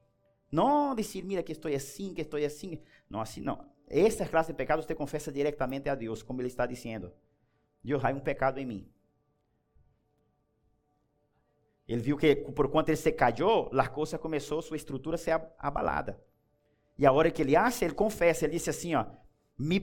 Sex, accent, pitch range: male, Brazilian, 135-180 Hz